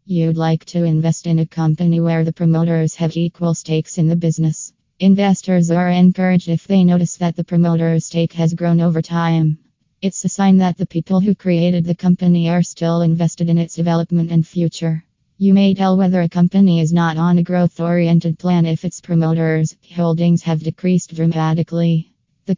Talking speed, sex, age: 180 wpm, female, 20-39